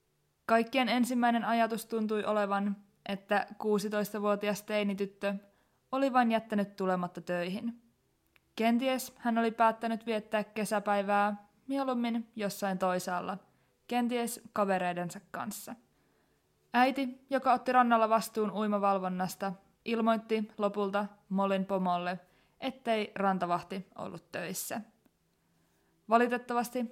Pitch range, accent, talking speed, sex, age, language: 190-235 Hz, native, 90 wpm, female, 20-39, Finnish